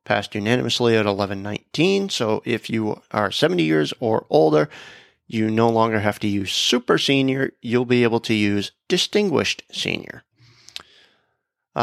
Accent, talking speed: American, 140 wpm